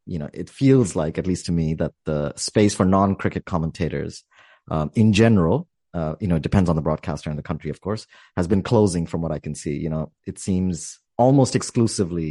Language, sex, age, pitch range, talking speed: English, male, 30-49, 80-105 Hz, 215 wpm